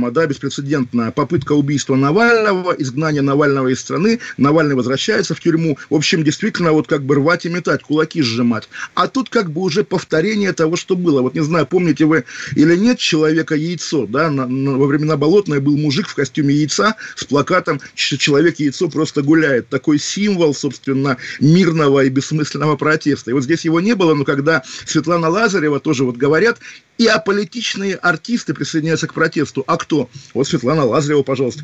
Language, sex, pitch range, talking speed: Russian, male, 140-170 Hz, 165 wpm